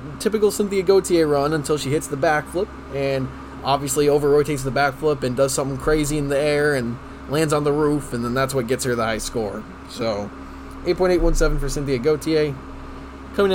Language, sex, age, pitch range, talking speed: English, male, 20-39, 130-165 Hz, 185 wpm